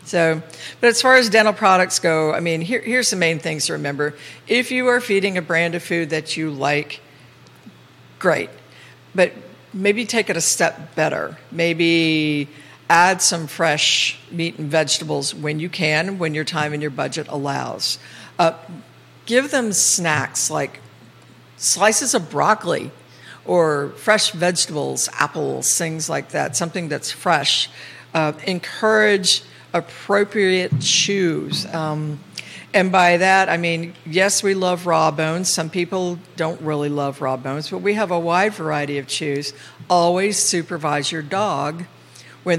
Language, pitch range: English, 150-185 Hz